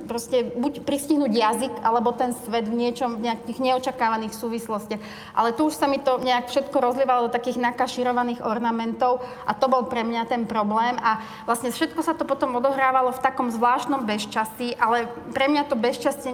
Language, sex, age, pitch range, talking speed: Slovak, female, 30-49, 225-255 Hz, 180 wpm